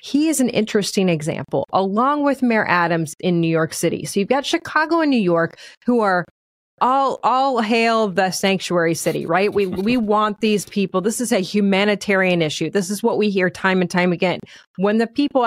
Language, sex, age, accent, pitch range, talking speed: English, female, 30-49, American, 190-265 Hz, 200 wpm